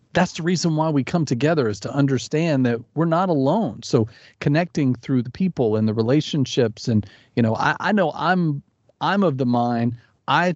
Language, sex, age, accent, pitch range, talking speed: English, male, 40-59, American, 120-165 Hz, 195 wpm